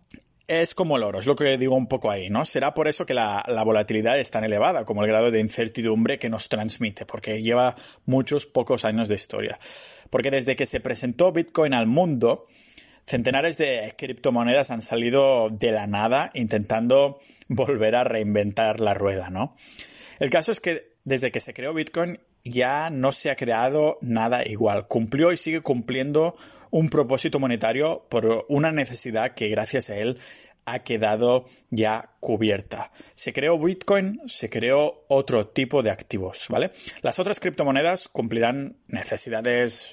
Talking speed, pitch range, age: 165 wpm, 110-150 Hz, 30-49